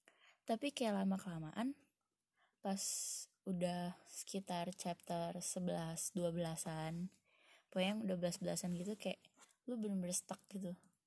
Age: 20-39